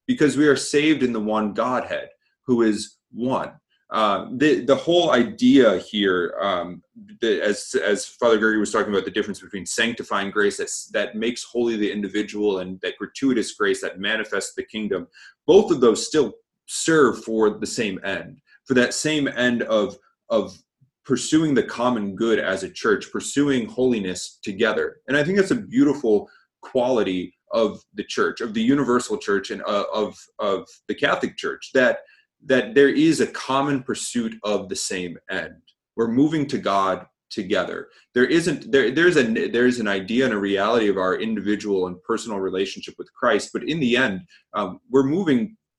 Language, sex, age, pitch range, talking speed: English, male, 30-49, 105-160 Hz, 175 wpm